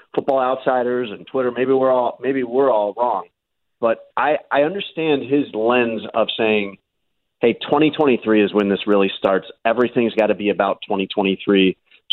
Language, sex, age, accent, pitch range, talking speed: English, male, 30-49, American, 105-130 Hz, 160 wpm